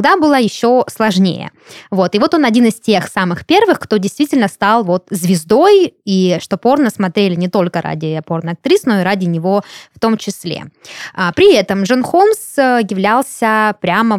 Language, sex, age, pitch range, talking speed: Russian, female, 20-39, 180-245 Hz, 165 wpm